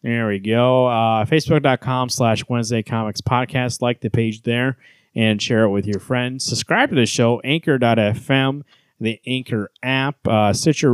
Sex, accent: male, American